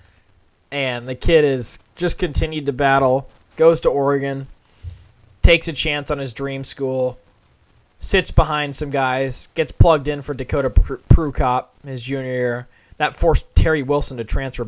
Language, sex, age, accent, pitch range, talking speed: English, male, 20-39, American, 110-150 Hz, 155 wpm